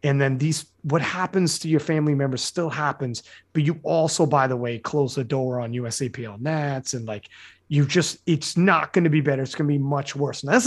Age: 30-49